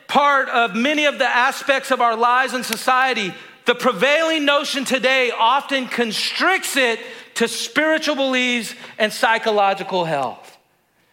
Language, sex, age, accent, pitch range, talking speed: English, male, 40-59, American, 230-290 Hz, 130 wpm